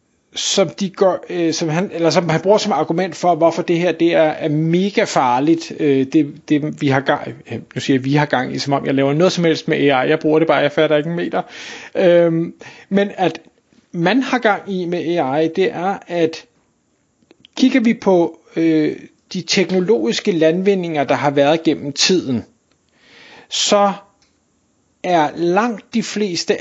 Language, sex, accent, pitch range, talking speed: Danish, male, native, 160-210 Hz, 150 wpm